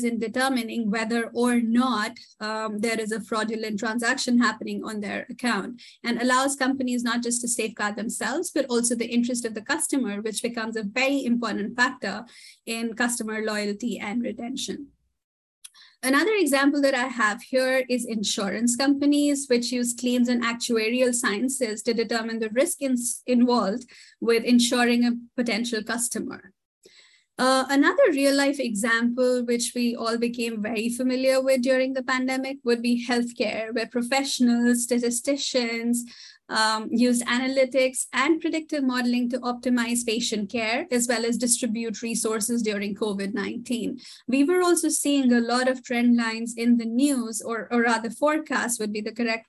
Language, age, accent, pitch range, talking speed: English, 20-39, Indian, 225-260 Hz, 150 wpm